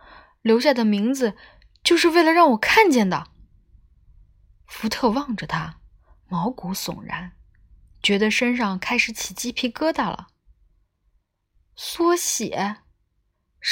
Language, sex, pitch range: Chinese, female, 170-245 Hz